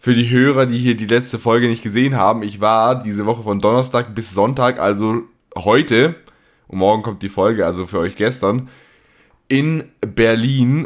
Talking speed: 175 wpm